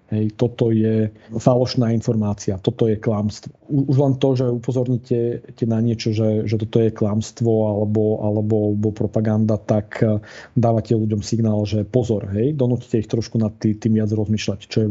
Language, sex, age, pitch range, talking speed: Slovak, male, 40-59, 110-130 Hz, 155 wpm